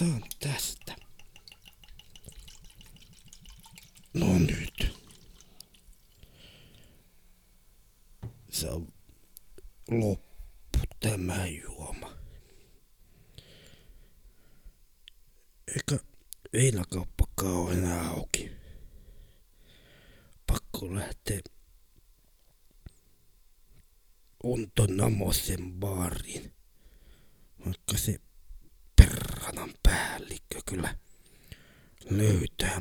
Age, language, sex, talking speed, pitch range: 60-79, Finnish, male, 45 wpm, 80-110 Hz